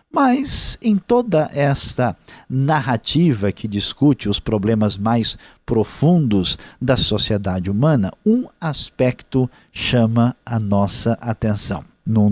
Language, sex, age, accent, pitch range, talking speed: Portuguese, male, 50-69, Brazilian, 115-145 Hz, 100 wpm